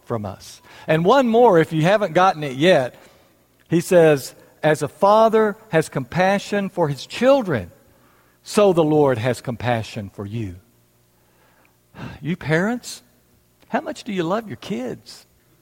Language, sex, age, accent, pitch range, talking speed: English, male, 60-79, American, 105-175 Hz, 140 wpm